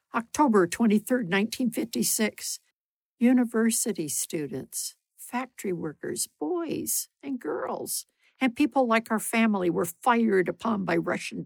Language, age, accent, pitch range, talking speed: English, 60-79, American, 155-225 Hz, 105 wpm